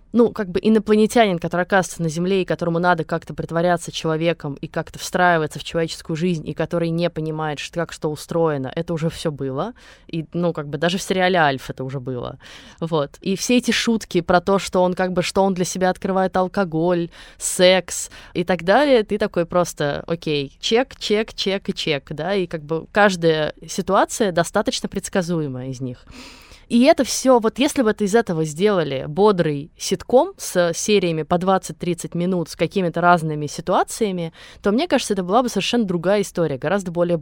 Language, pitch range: Russian, 165-200 Hz